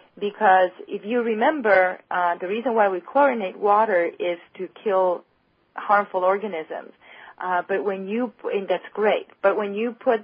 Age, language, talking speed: 30-49, English, 160 wpm